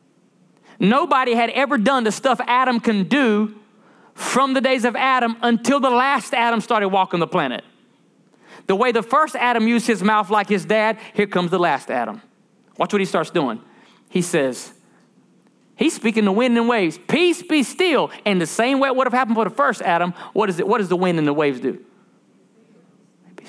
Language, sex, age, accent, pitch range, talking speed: English, male, 30-49, American, 200-260 Hz, 195 wpm